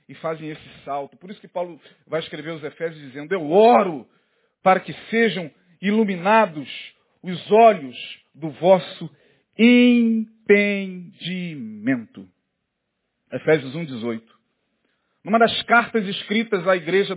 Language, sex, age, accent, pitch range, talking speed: Portuguese, male, 50-69, Brazilian, 160-225 Hz, 110 wpm